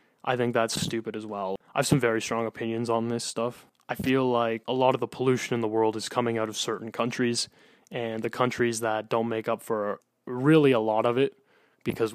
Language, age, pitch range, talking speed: English, 20-39, 110-130 Hz, 225 wpm